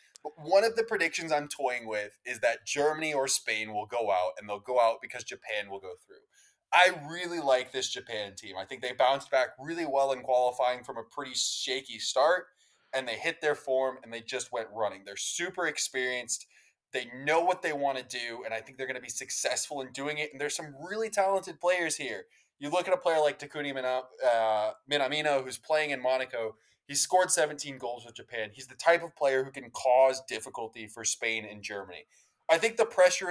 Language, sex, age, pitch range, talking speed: English, male, 20-39, 125-165 Hz, 210 wpm